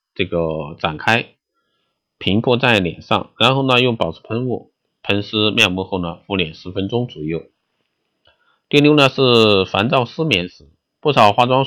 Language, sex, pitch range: Chinese, male, 90-120 Hz